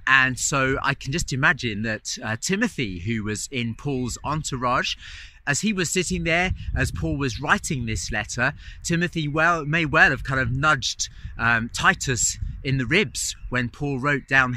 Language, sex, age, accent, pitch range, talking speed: English, male, 40-59, British, 110-160 Hz, 175 wpm